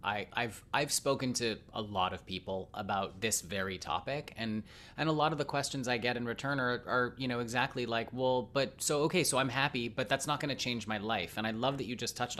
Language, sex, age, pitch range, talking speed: English, male, 30-49, 110-145 Hz, 250 wpm